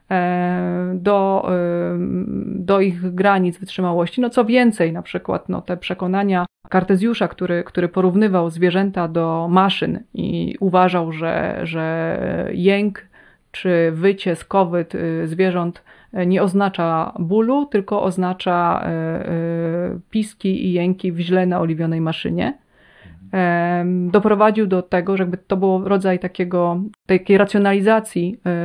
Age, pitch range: 30-49, 175-195 Hz